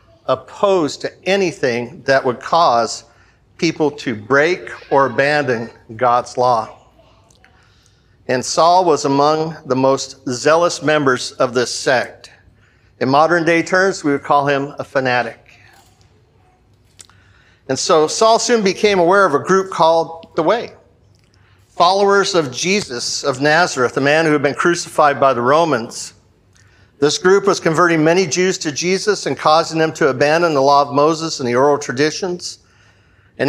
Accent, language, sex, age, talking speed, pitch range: American, English, male, 50-69, 145 wpm, 120-165 Hz